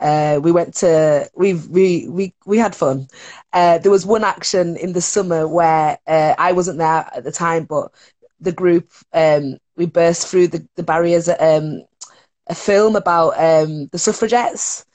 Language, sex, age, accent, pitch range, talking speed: English, female, 20-39, British, 160-205 Hz, 175 wpm